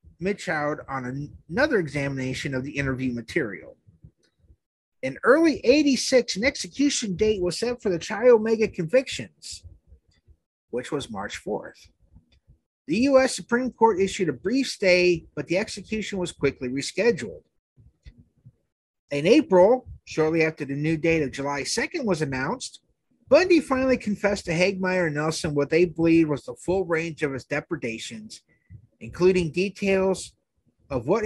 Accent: American